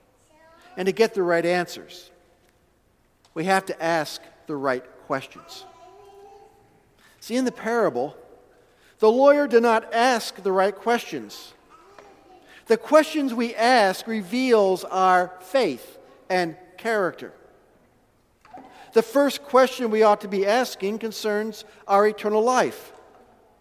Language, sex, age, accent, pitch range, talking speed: English, male, 50-69, American, 190-275 Hz, 115 wpm